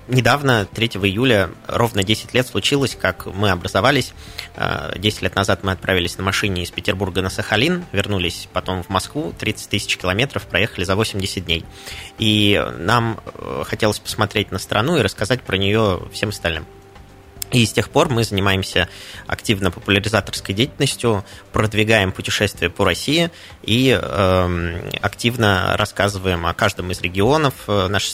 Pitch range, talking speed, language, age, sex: 95-110 Hz, 140 wpm, Russian, 20-39, male